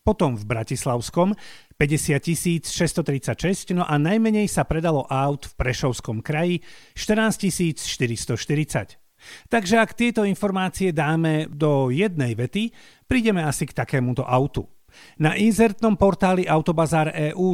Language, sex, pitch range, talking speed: Slovak, male, 135-185 Hz, 115 wpm